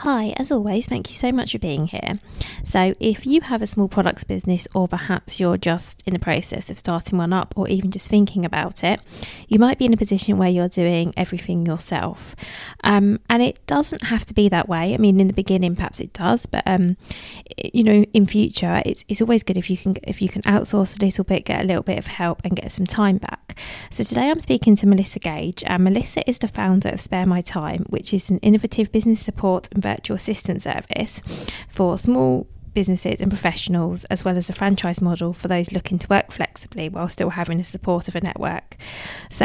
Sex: female